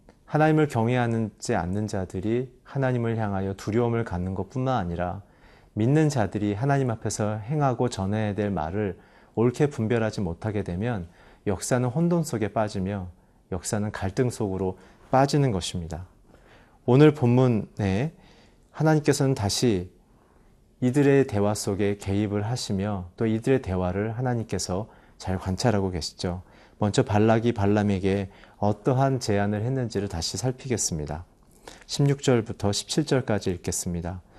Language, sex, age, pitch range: Korean, male, 30-49, 95-125 Hz